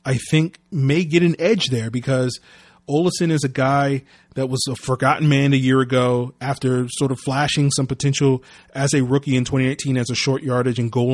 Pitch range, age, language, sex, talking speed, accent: 125-145 Hz, 30-49, English, male, 200 wpm, American